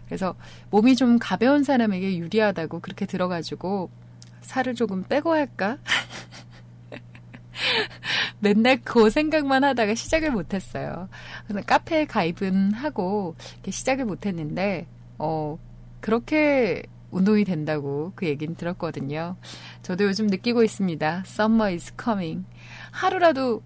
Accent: native